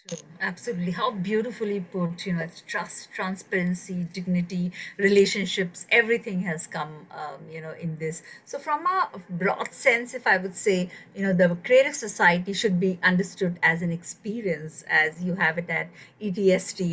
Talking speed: 165 wpm